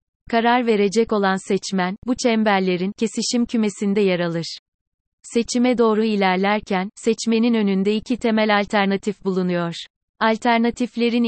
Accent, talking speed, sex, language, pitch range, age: native, 105 wpm, female, Turkish, 190-225 Hz, 30-49